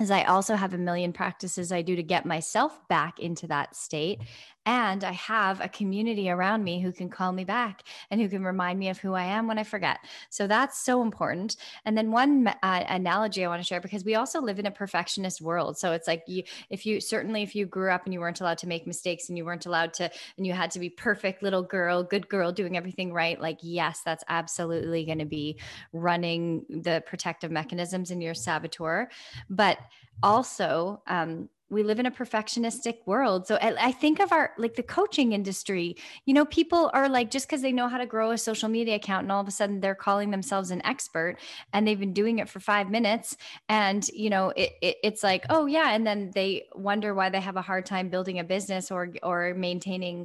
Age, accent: 10-29, American